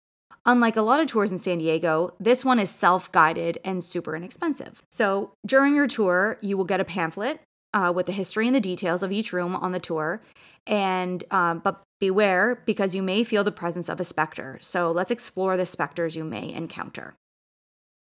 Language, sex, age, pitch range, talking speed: English, female, 20-39, 180-230 Hz, 195 wpm